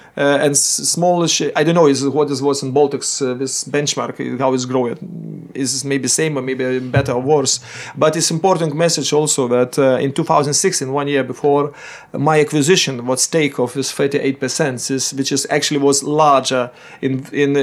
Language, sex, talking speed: English, male, 185 wpm